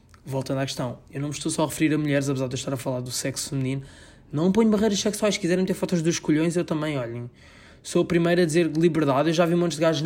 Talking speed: 280 wpm